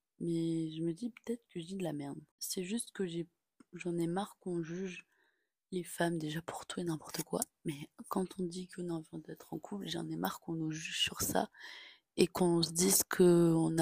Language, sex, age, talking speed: French, female, 20-39, 220 wpm